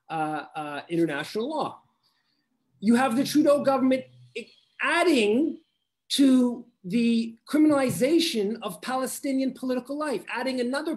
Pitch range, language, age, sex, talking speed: 200-270 Hz, English, 40-59, male, 105 wpm